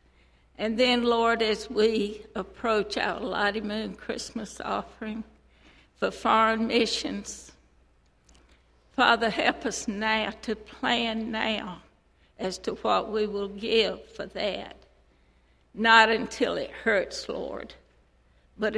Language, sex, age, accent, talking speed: English, female, 60-79, American, 110 wpm